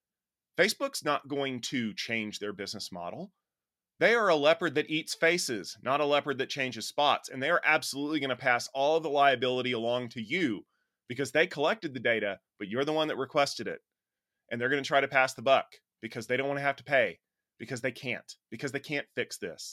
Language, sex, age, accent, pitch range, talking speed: English, male, 30-49, American, 120-150 Hz, 215 wpm